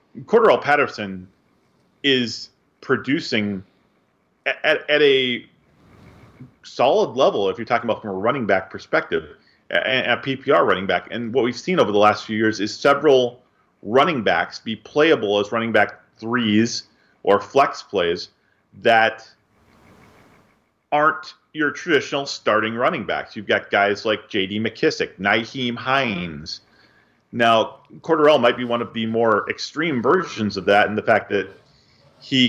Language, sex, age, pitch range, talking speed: English, male, 40-59, 105-130 Hz, 140 wpm